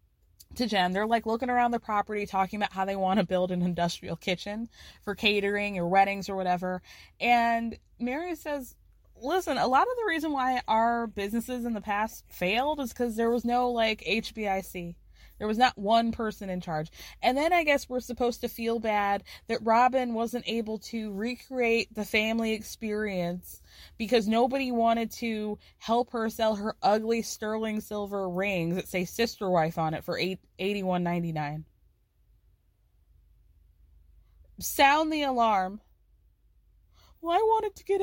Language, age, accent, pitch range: English, 20-39, American, 185-285 Hz